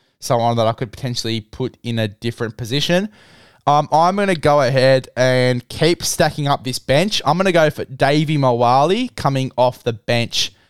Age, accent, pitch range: 20-39, Australian, 115-150 Hz